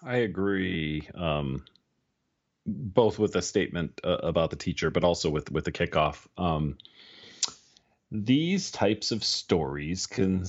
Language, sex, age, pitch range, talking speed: English, male, 30-49, 75-100 Hz, 130 wpm